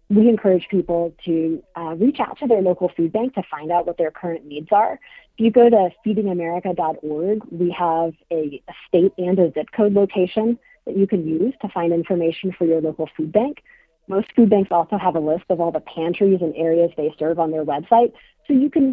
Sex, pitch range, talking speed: female, 160-195 Hz, 215 wpm